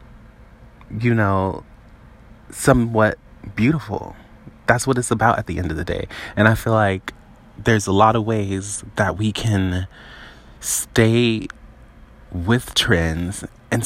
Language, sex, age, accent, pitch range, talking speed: English, male, 30-49, American, 100-120 Hz, 130 wpm